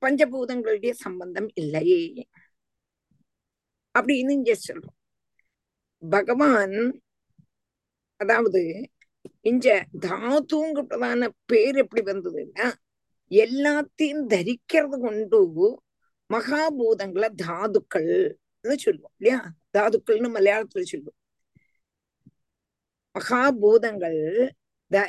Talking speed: 60 wpm